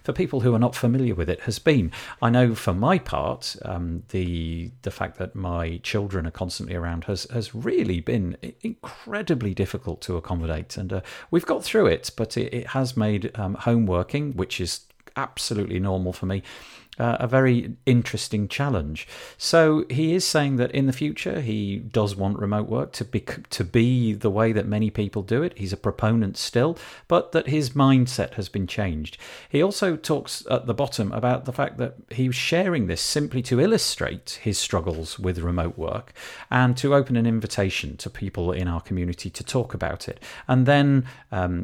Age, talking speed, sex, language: 40-59, 190 wpm, male, English